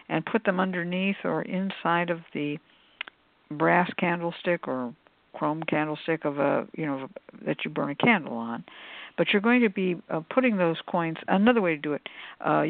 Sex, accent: female, American